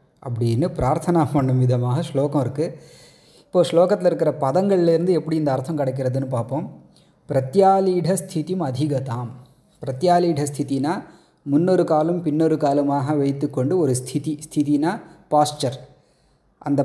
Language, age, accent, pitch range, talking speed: Tamil, 30-49, native, 140-170 Hz, 105 wpm